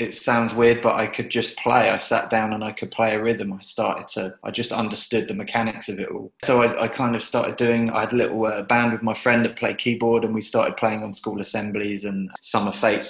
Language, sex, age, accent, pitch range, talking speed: English, male, 20-39, British, 105-120 Hz, 260 wpm